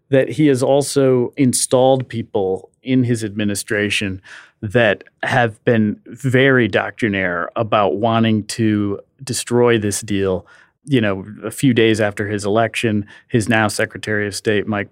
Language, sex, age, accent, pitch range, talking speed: English, male, 40-59, American, 110-130 Hz, 135 wpm